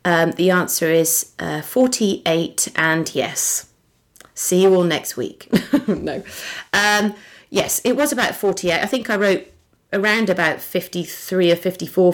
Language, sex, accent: English, female, British